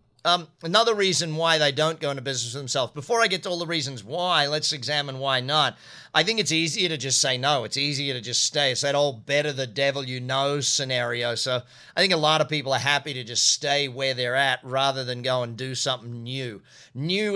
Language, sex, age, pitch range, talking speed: English, male, 40-59, 135-170 Hz, 235 wpm